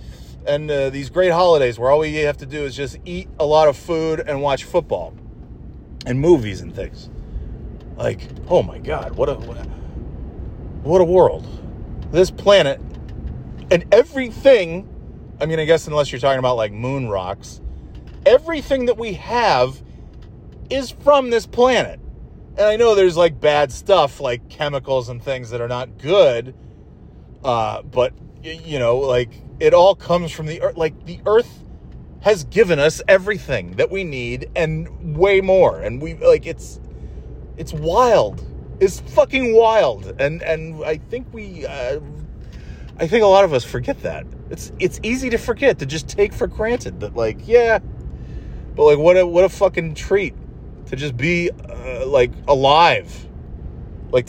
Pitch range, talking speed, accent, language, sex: 125-195 Hz, 160 wpm, American, English, male